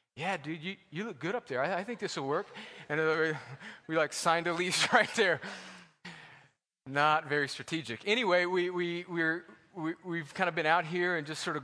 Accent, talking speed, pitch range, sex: American, 190 wpm, 140-160 Hz, male